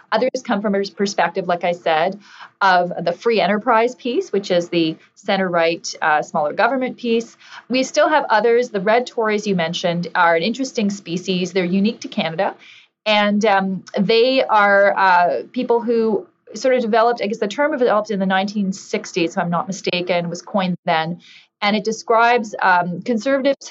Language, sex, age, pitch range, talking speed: English, female, 30-49, 175-220 Hz, 170 wpm